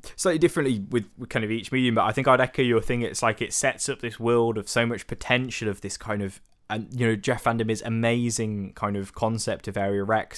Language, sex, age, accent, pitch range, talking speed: English, male, 10-29, British, 100-120 Hz, 250 wpm